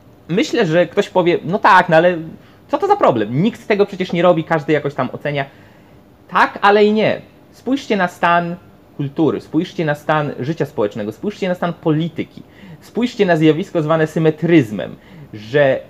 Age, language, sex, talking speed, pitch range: 30-49, Polish, male, 170 wpm, 150-195 Hz